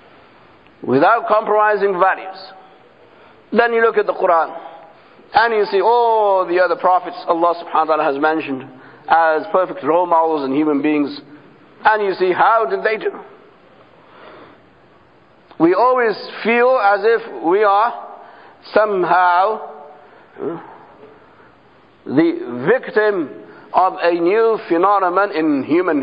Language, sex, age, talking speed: English, male, 60-79, 120 wpm